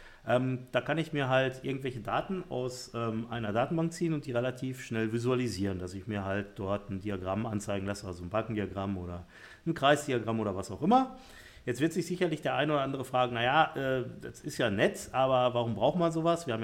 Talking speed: 215 wpm